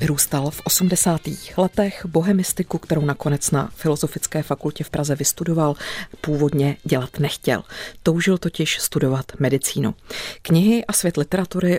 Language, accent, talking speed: Czech, native, 120 wpm